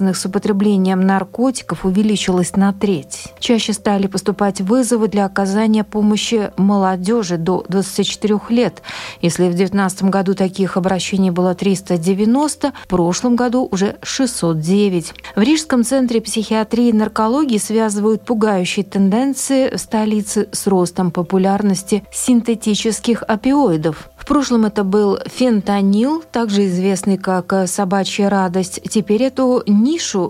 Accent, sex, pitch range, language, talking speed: native, female, 190-230 Hz, Russian, 115 wpm